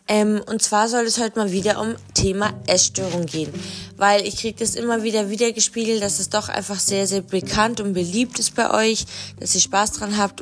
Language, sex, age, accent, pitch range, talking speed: German, female, 20-39, German, 185-220 Hz, 205 wpm